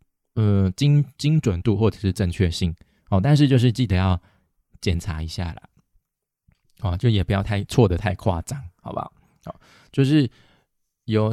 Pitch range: 90-120 Hz